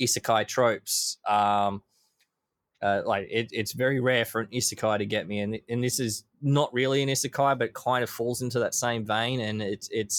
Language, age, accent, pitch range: English, 20-39, Australian, 100-120 Hz